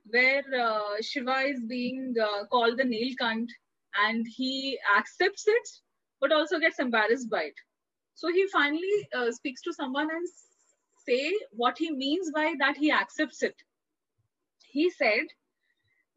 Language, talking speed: Hindi, 145 wpm